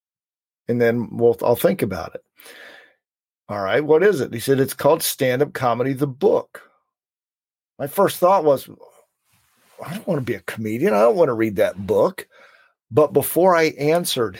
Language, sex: English, male